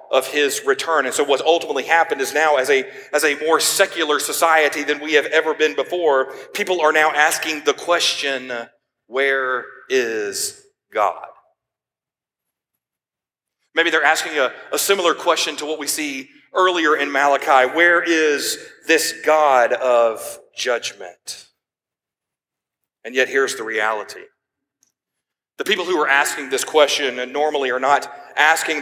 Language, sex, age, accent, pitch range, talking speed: English, male, 40-59, American, 140-225 Hz, 140 wpm